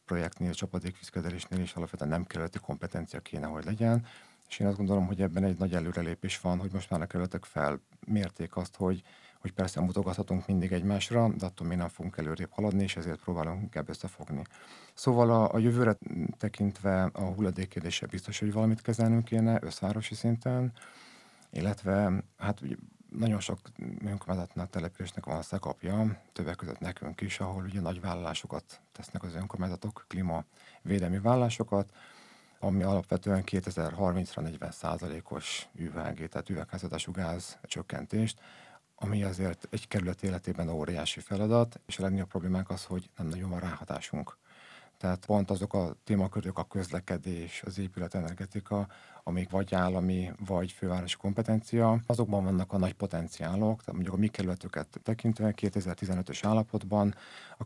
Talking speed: 140 wpm